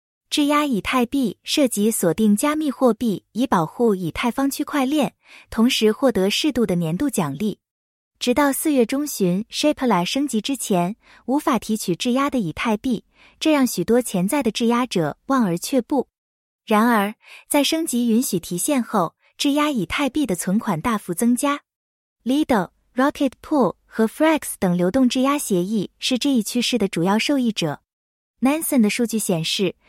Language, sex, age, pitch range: English, female, 20-39, 195-275 Hz